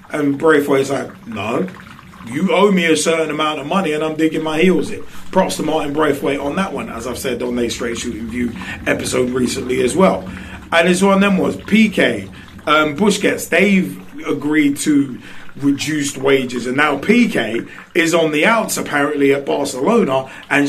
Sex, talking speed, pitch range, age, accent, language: male, 185 wpm, 140-175 Hz, 30-49, British, English